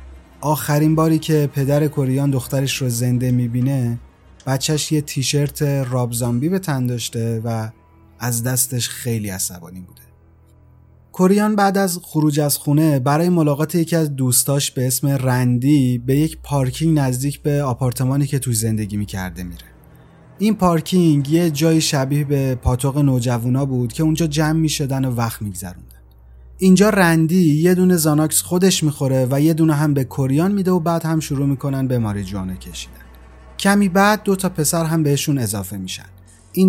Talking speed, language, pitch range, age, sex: 155 wpm, Persian, 125-165 Hz, 30-49, male